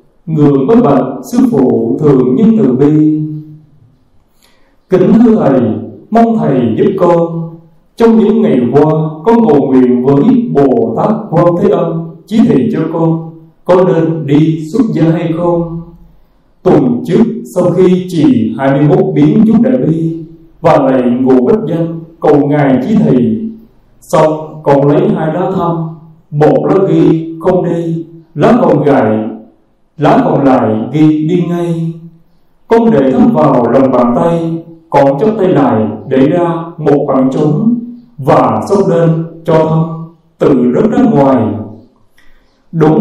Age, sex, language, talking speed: 20-39, male, Vietnamese, 145 wpm